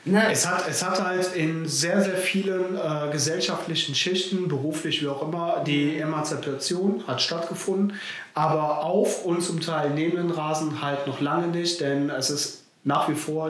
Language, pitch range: German, 140-165 Hz